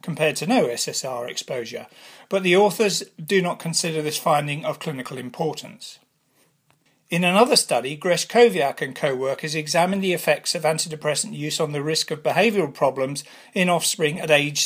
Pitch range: 150-185 Hz